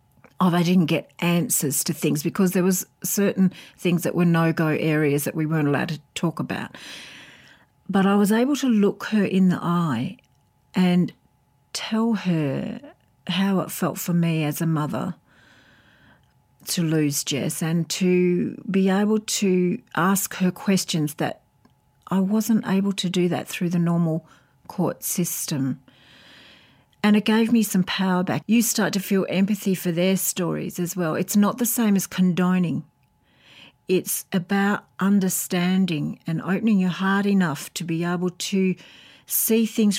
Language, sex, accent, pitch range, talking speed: English, female, Australian, 160-195 Hz, 160 wpm